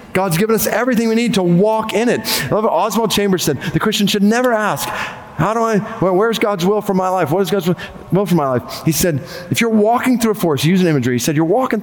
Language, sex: English, male